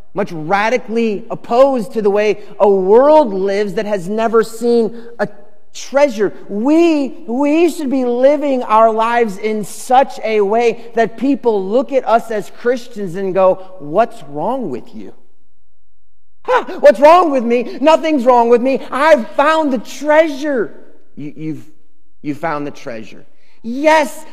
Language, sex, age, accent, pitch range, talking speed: English, male, 30-49, American, 205-260 Hz, 140 wpm